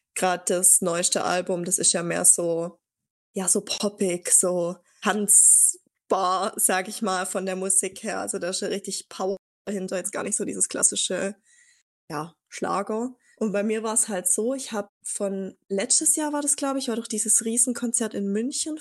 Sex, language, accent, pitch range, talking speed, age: female, German, German, 190-230 Hz, 185 wpm, 20-39